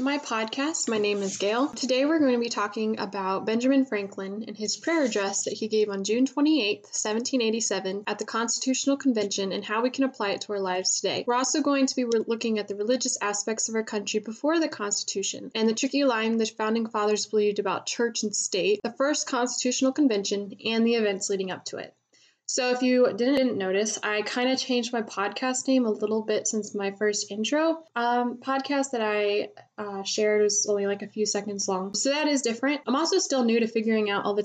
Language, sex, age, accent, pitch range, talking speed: English, female, 10-29, American, 205-255 Hz, 215 wpm